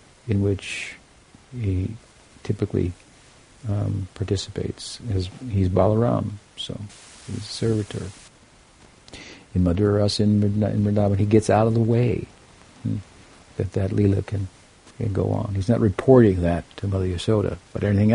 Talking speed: 140 wpm